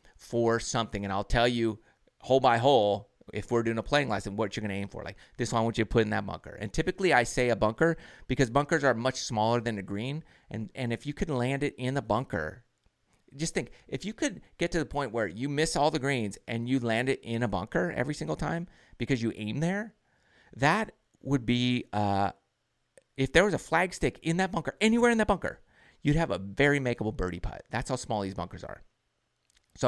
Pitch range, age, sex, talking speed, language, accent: 105-140 Hz, 30-49, male, 230 wpm, English, American